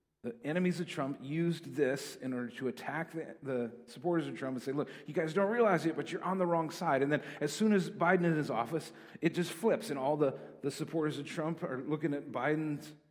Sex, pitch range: male, 115-165 Hz